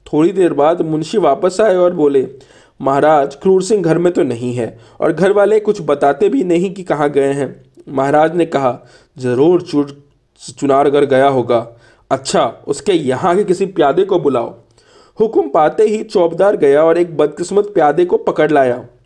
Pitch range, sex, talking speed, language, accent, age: 145-200 Hz, male, 175 wpm, Hindi, native, 40-59